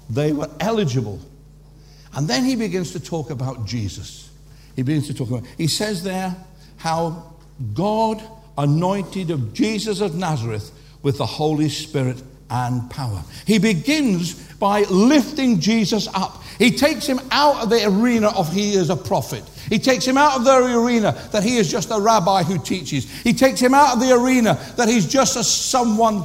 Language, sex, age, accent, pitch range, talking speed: English, male, 60-79, British, 150-230 Hz, 175 wpm